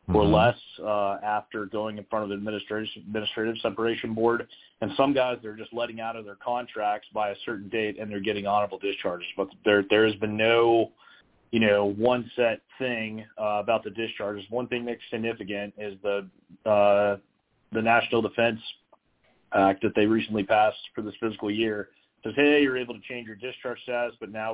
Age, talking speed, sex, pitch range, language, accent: 30-49, 190 wpm, male, 100-110 Hz, English, American